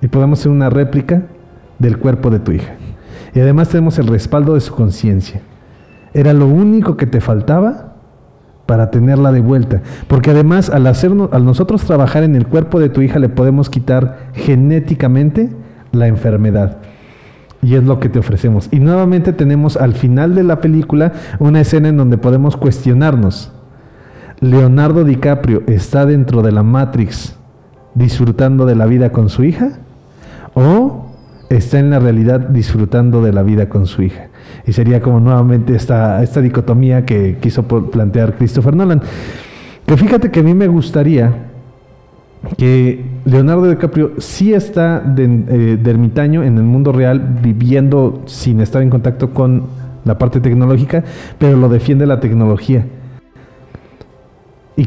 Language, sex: Spanish, male